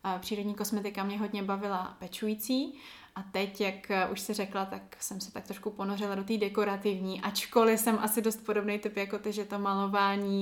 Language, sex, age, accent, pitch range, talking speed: Czech, female, 20-39, native, 195-225 Hz, 185 wpm